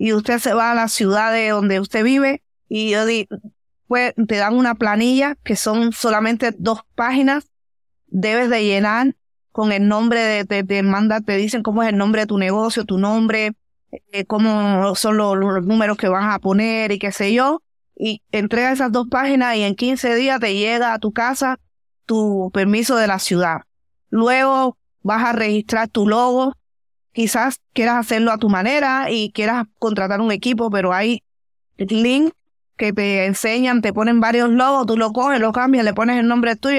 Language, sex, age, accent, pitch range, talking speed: English, female, 20-39, American, 205-240 Hz, 190 wpm